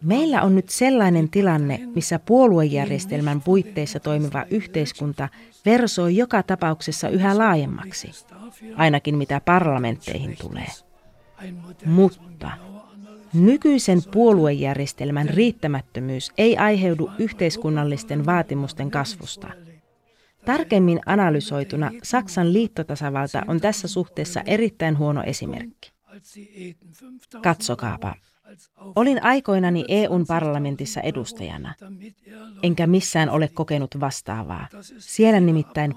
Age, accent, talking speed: 30-49, native, 85 wpm